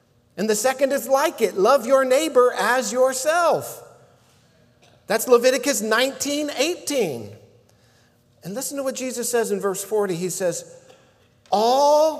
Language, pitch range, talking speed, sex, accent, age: English, 190-265 Hz, 135 wpm, male, American, 50-69